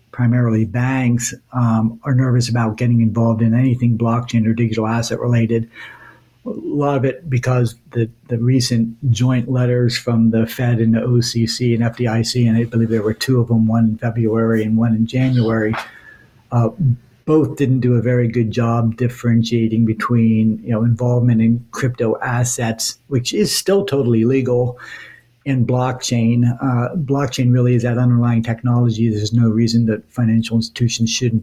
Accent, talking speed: American, 160 wpm